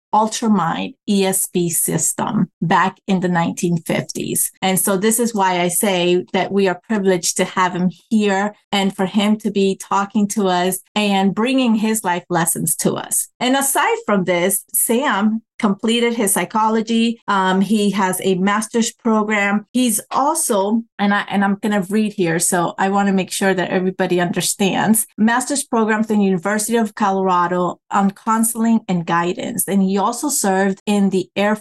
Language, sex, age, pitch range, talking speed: English, female, 30-49, 185-215 Hz, 170 wpm